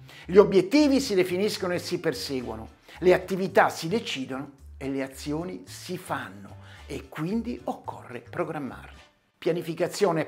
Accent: native